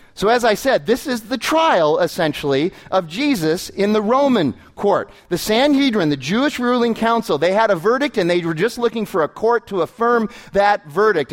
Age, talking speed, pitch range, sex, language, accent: 30-49, 195 wpm, 165-230 Hz, male, English, American